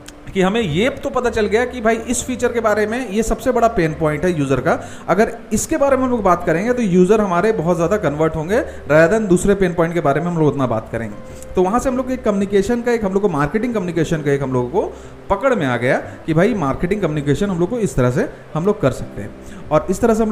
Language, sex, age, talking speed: Hindi, male, 40-59, 270 wpm